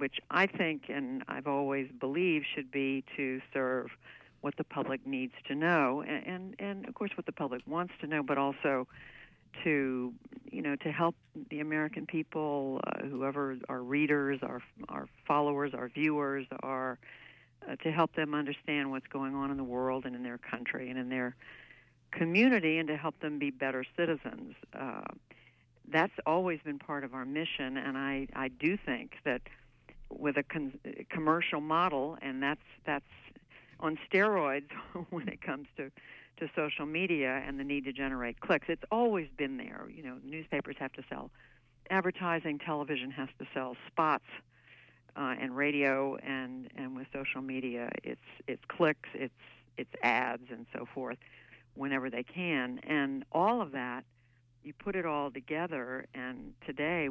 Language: English